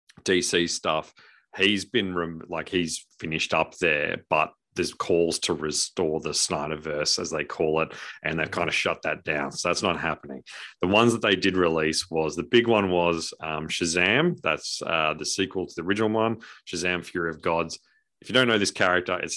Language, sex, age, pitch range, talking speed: English, male, 30-49, 80-100 Hz, 195 wpm